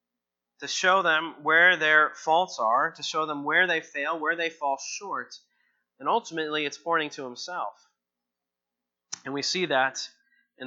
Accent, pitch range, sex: American, 120-160 Hz, male